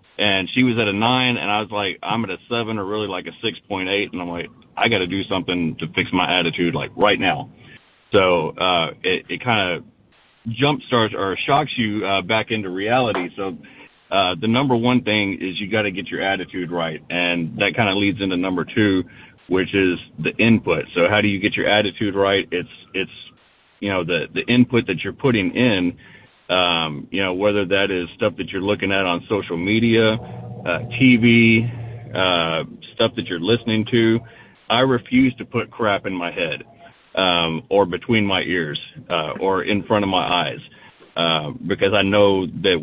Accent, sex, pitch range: American, male, 90-115 Hz